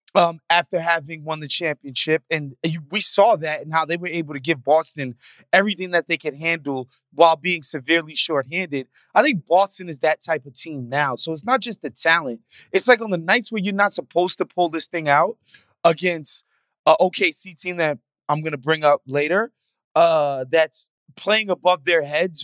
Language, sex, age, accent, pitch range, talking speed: English, male, 20-39, American, 140-180 Hz, 195 wpm